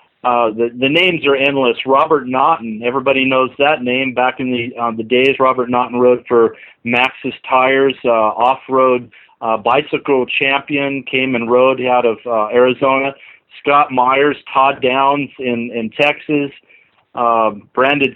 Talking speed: 150 wpm